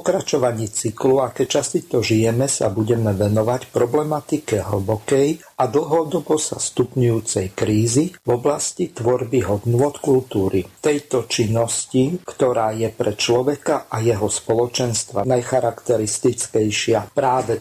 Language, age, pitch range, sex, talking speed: Slovak, 50-69, 110-135 Hz, male, 110 wpm